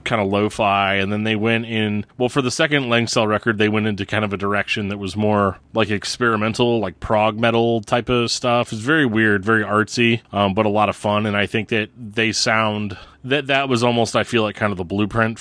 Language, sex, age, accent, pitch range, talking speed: English, male, 30-49, American, 105-120 Hz, 240 wpm